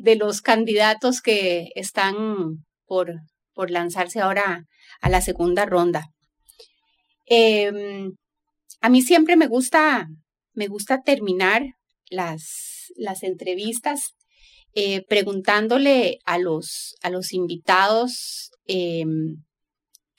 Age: 30-49